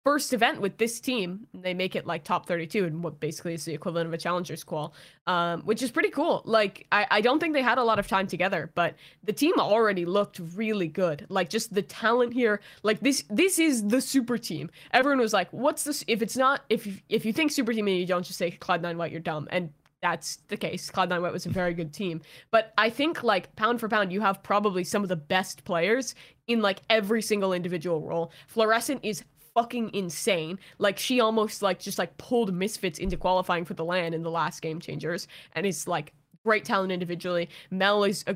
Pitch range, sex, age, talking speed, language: 175-220 Hz, female, 10-29, 225 wpm, English